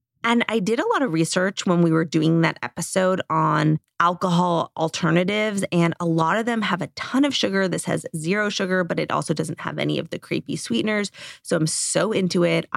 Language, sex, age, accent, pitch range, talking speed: English, female, 20-39, American, 160-205 Hz, 210 wpm